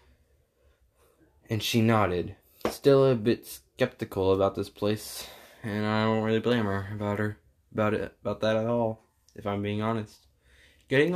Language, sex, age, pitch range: English, male, 10-29, 95-115 Hz